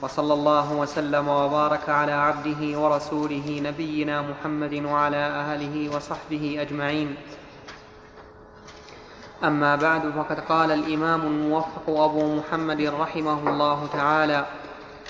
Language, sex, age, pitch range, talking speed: Arabic, male, 20-39, 155-170 Hz, 95 wpm